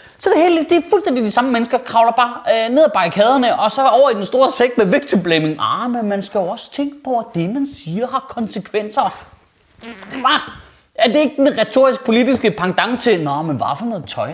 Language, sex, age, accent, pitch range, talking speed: Danish, male, 20-39, native, 155-230 Hz, 235 wpm